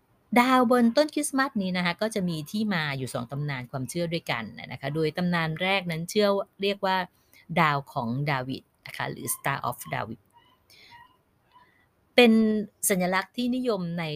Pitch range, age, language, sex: 140-190 Hz, 20-39, Thai, female